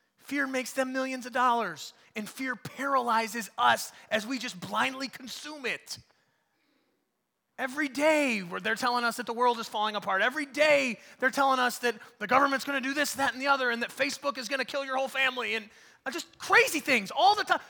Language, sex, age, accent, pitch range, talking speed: English, male, 30-49, American, 245-320 Hz, 205 wpm